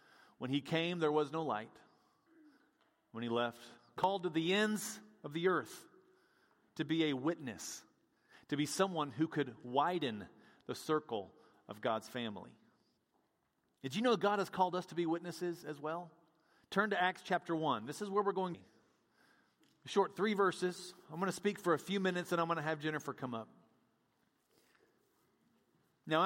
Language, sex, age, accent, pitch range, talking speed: English, male, 40-59, American, 160-200 Hz, 175 wpm